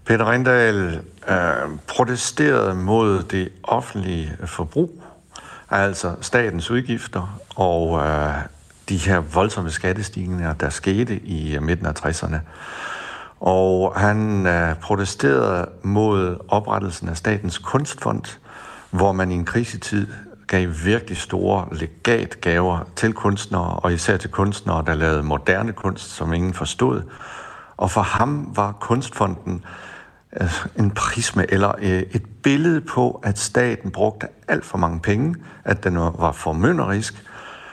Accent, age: native, 60-79